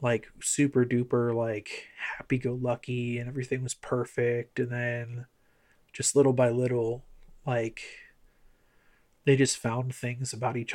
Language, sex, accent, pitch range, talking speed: English, male, American, 120-140 Hz, 135 wpm